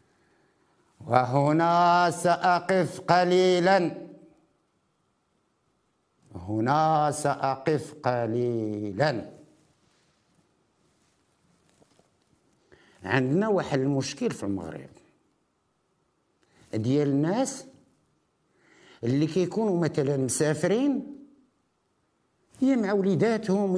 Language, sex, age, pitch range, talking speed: French, male, 60-79, 170-235 Hz, 50 wpm